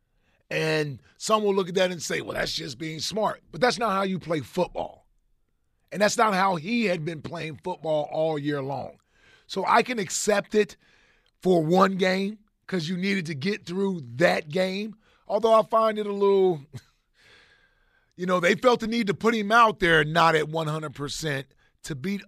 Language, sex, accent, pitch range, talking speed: English, male, American, 160-195 Hz, 190 wpm